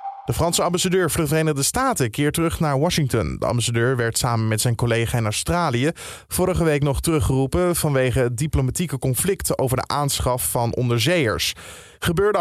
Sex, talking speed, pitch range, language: male, 160 wpm, 120-170 Hz, Dutch